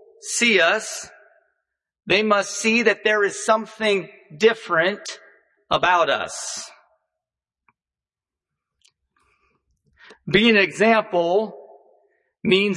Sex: male